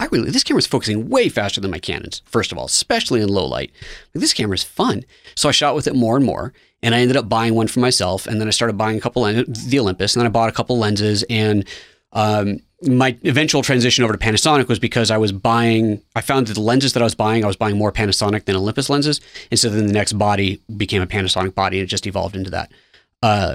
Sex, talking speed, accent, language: male, 260 wpm, American, English